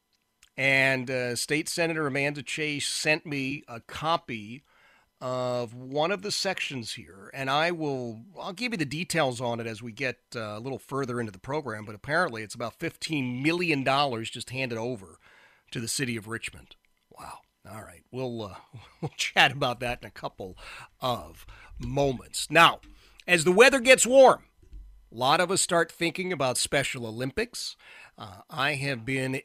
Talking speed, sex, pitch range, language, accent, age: 170 wpm, male, 120-150 Hz, English, American, 40-59